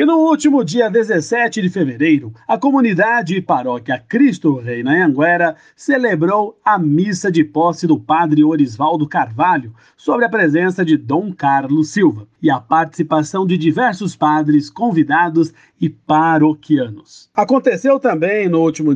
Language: Portuguese